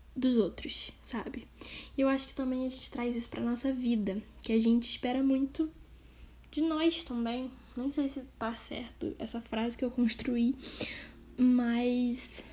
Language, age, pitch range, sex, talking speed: Portuguese, 10-29, 235-280 Hz, female, 165 wpm